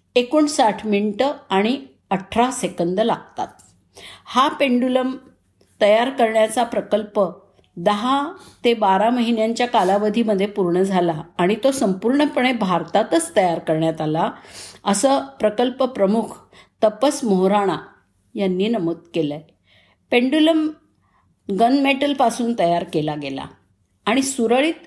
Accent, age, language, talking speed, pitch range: native, 50-69, Marathi, 100 wpm, 180-260 Hz